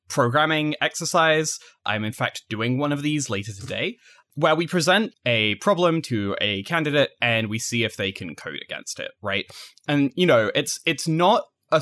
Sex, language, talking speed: male, English, 185 wpm